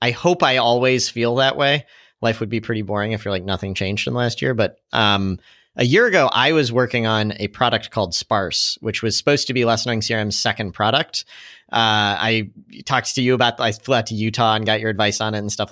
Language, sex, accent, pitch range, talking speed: English, male, American, 105-130 Hz, 240 wpm